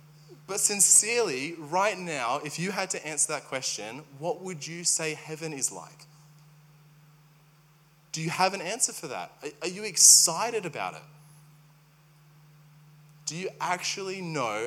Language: English